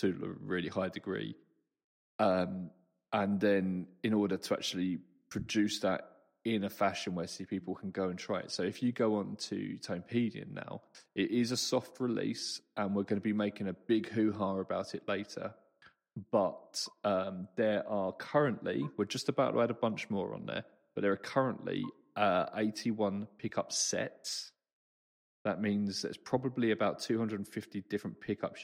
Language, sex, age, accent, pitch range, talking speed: English, male, 20-39, British, 95-115 Hz, 170 wpm